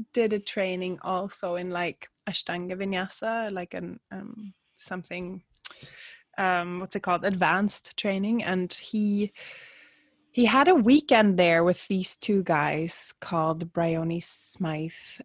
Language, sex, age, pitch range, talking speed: English, female, 20-39, 165-215 Hz, 125 wpm